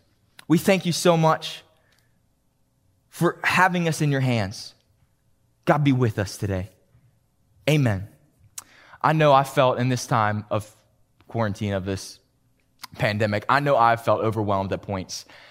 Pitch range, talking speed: 110-150 Hz, 140 wpm